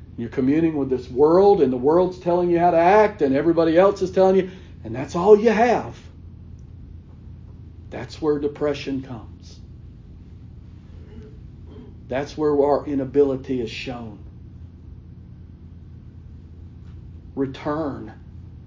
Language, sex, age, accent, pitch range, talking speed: English, male, 50-69, American, 95-160 Hz, 115 wpm